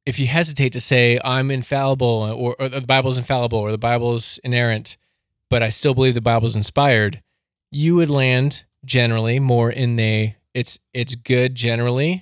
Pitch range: 115-135 Hz